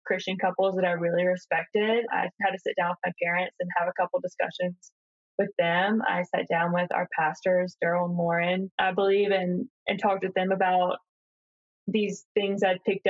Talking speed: 190 wpm